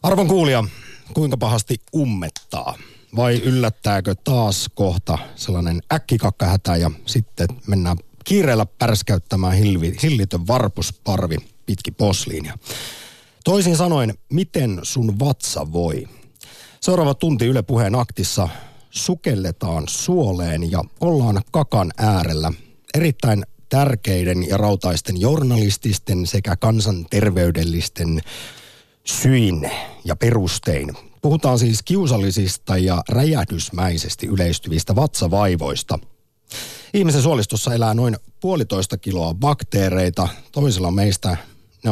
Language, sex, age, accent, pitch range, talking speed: Finnish, male, 50-69, native, 90-130 Hz, 90 wpm